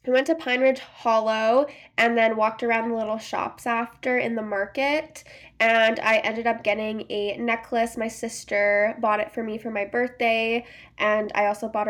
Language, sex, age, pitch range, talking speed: English, female, 10-29, 215-260 Hz, 185 wpm